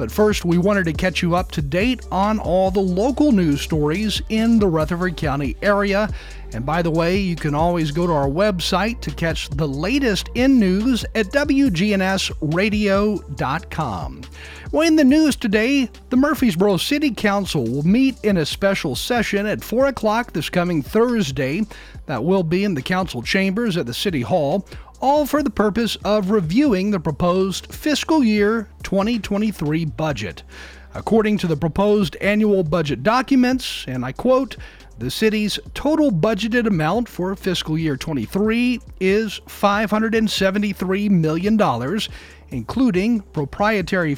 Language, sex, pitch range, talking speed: English, male, 165-220 Hz, 145 wpm